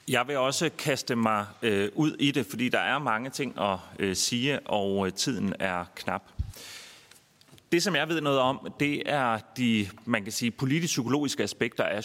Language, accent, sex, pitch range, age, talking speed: Danish, native, male, 100-140 Hz, 30-49, 155 wpm